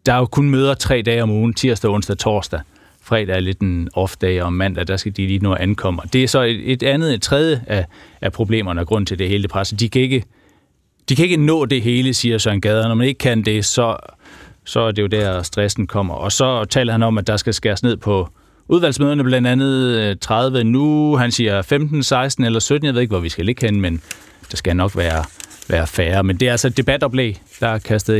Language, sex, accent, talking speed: Danish, male, native, 235 wpm